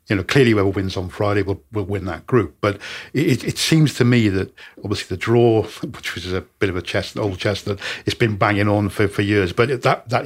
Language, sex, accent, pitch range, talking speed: English, male, British, 95-115 Hz, 250 wpm